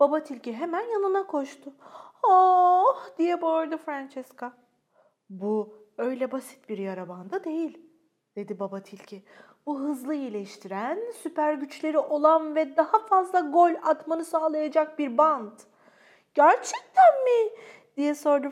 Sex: female